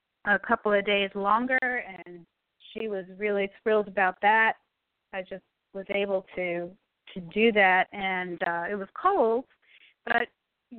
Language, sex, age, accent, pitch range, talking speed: English, female, 40-59, American, 185-225 Hz, 150 wpm